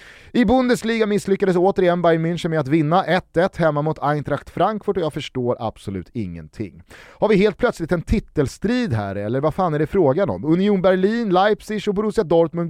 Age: 30-49